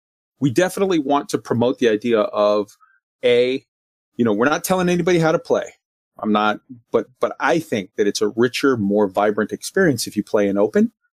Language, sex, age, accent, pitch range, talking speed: English, male, 30-49, American, 110-160 Hz, 195 wpm